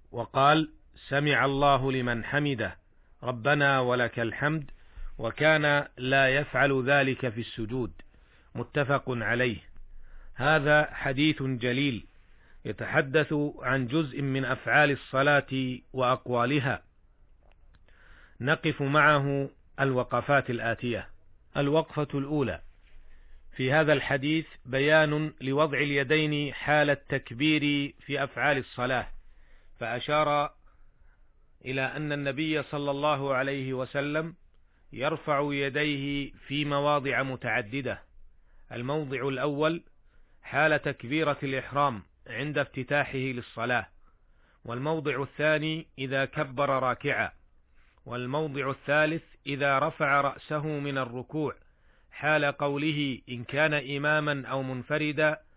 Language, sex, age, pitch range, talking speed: Arabic, male, 40-59, 125-150 Hz, 90 wpm